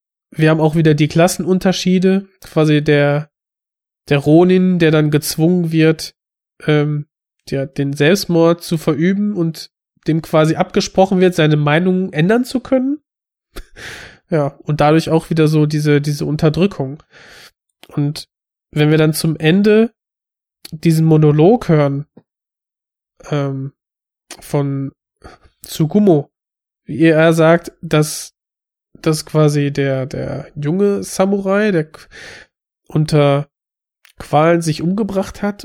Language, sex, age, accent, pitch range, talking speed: German, male, 20-39, German, 150-185 Hz, 115 wpm